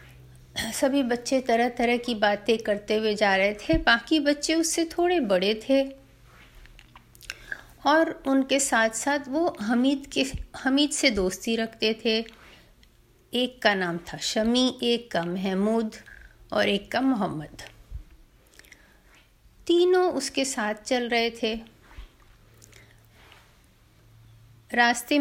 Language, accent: Hindi, native